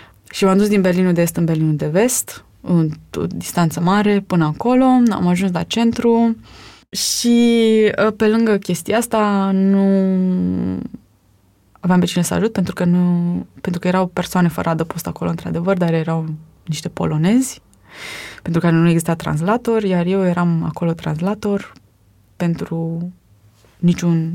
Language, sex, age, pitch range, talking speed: Romanian, female, 20-39, 160-195 Hz, 145 wpm